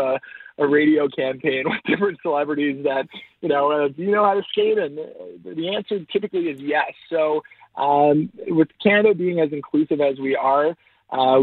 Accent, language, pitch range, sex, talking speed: American, English, 145-190 Hz, male, 180 wpm